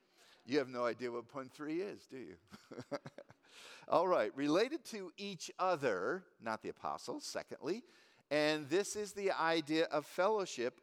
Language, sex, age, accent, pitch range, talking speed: English, male, 50-69, American, 130-190 Hz, 150 wpm